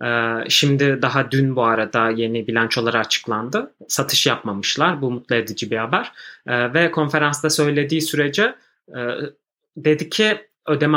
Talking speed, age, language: 120 wpm, 30-49, Turkish